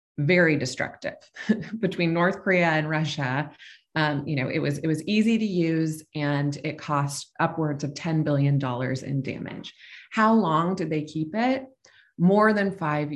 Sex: female